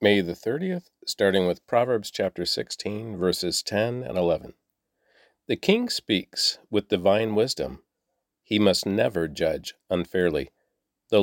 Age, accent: 40-59, American